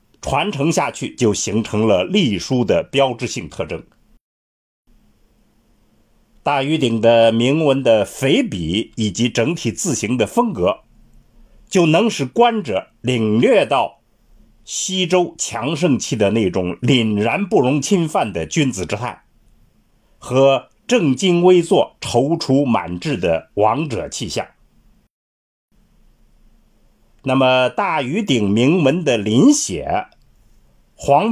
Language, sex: Chinese, male